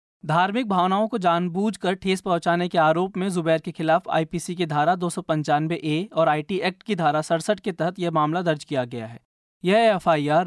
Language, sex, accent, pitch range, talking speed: Hindi, male, native, 160-200 Hz, 195 wpm